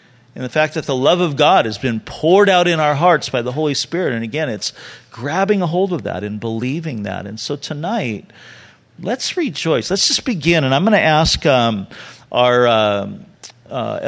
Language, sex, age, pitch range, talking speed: English, male, 40-59, 125-180 Hz, 195 wpm